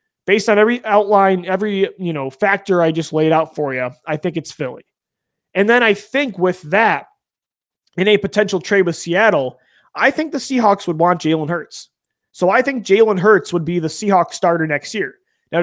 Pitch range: 160-200 Hz